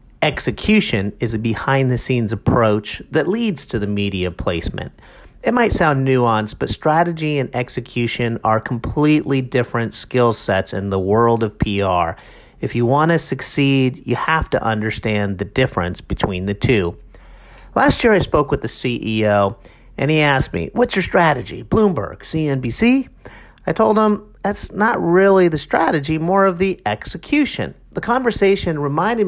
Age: 40-59